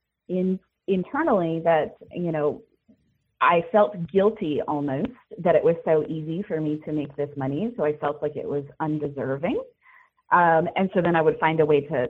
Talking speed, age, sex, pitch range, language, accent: 185 wpm, 30-49, female, 150-205 Hz, English, American